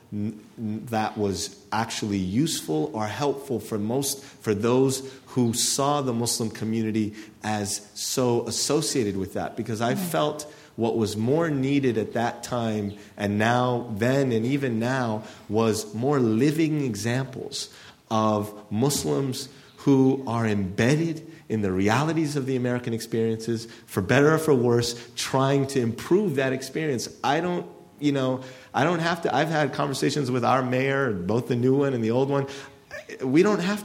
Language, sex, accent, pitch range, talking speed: English, male, American, 115-145 Hz, 155 wpm